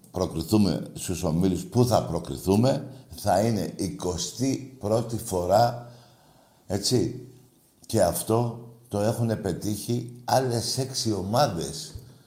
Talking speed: 100 wpm